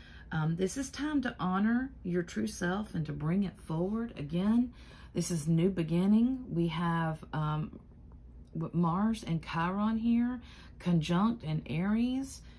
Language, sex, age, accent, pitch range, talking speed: English, female, 40-59, American, 165-210 Hz, 140 wpm